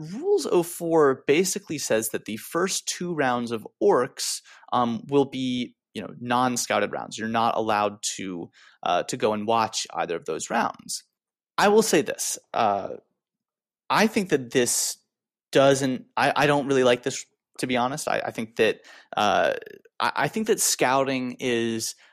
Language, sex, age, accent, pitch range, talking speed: English, male, 30-49, American, 115-160 Hz, 165 wpm